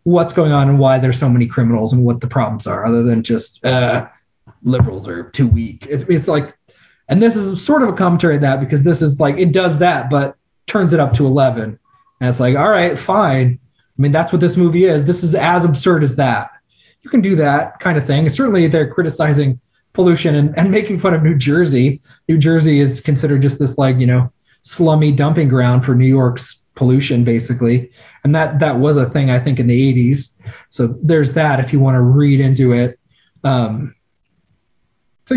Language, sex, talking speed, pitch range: English, male, 210 wpm, 125-155 Hz